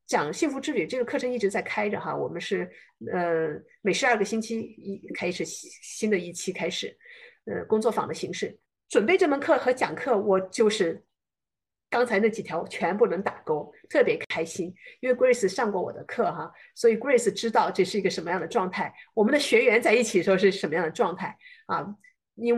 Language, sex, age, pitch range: Chinese, female, 50-69, 195-305 Hz